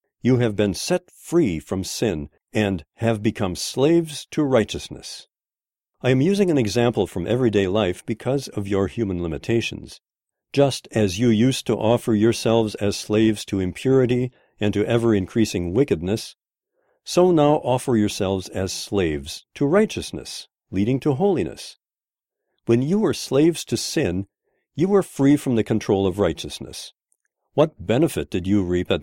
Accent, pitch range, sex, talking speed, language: American, 100-135 Hz, male, 150 wpm, English